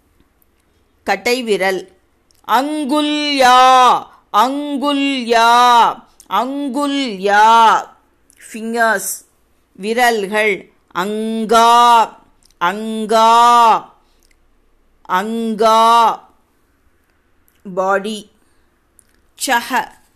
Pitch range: 195-250 Hz